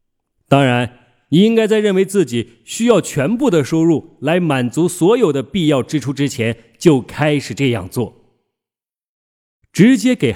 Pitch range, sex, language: 115-190 Hz, male, Chinese